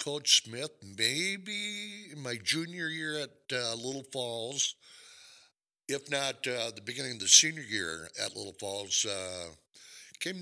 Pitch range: 100-130 Hz